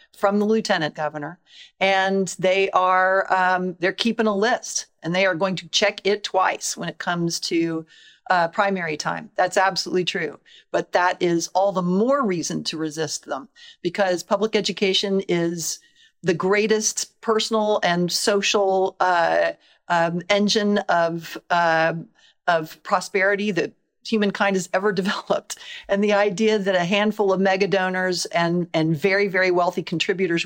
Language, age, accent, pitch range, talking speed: English, 50-69, American, 170-205 Hz, 150 wpm